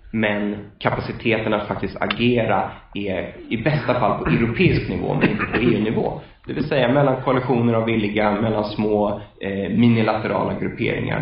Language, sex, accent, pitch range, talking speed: English, male, Swedish, 105-130 Hz, 145 wpm